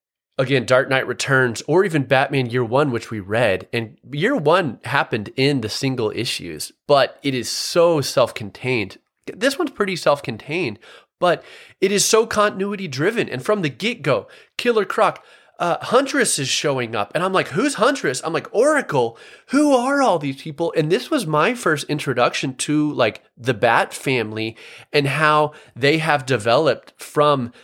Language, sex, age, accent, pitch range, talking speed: English, male, 30-49, American, 115-155 Hz, 165 wpm